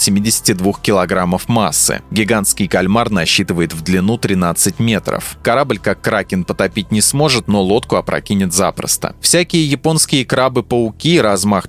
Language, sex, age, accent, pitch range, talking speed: Russian, male, 20-39, native, 95-125 Hz, 125 wpm